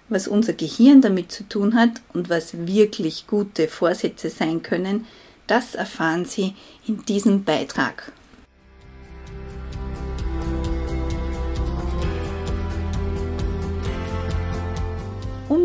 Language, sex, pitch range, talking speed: German, female, 175-230 Hz, 80 wpm